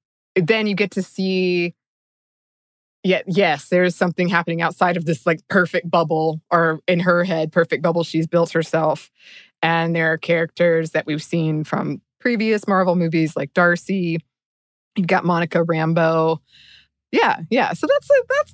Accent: American